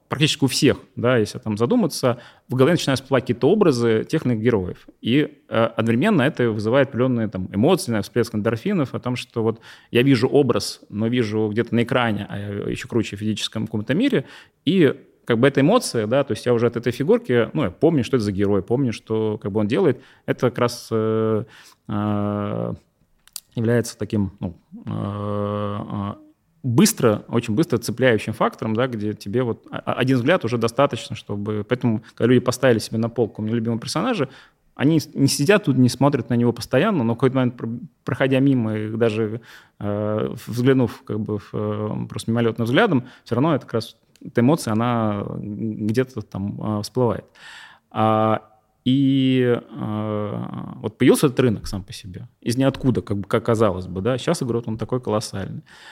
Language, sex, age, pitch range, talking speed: Russian, male, 30-49, 105-125 Hz, 165 wpm